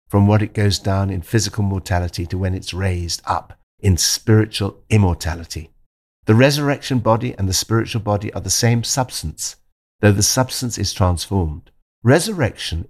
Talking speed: 155 wpm